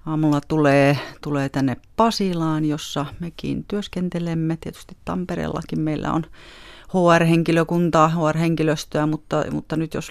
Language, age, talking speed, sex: Finnish, 30-49, 105 wpm, female